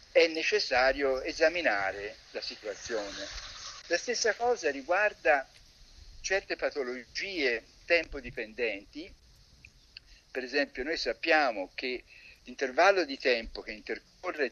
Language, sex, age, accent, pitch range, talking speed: Italian, male, 50-69, native, 125-195 Hz, 95 wpm